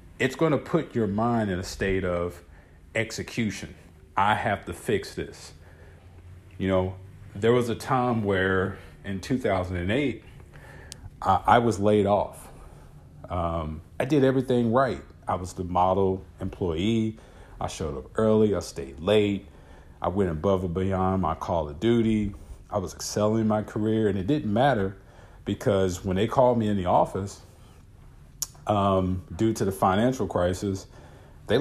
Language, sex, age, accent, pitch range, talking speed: English, male, 40-59, American, 85-110 Hz, 150 wpm